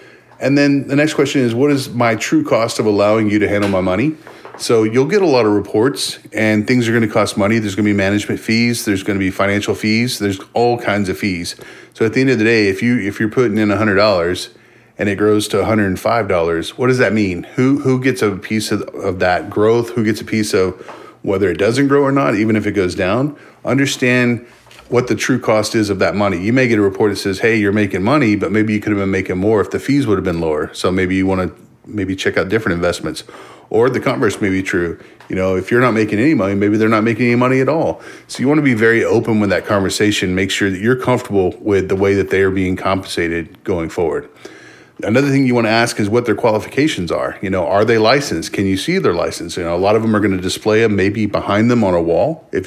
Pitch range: 100-120 Hz